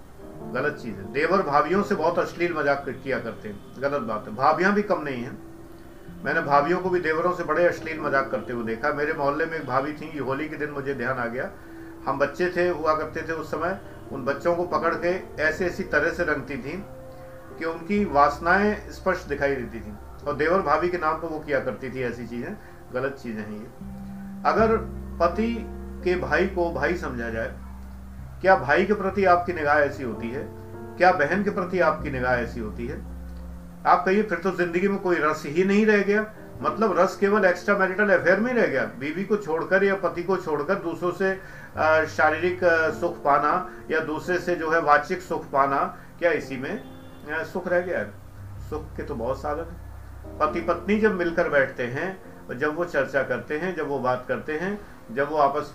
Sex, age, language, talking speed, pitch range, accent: male, 50-69, Hindi, 135 wpm, 130-180 Hz, native